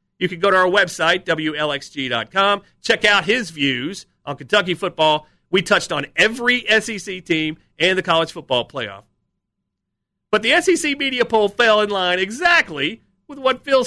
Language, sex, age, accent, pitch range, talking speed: English, male, 40-59, American, 170-230 Hz, 160 wpm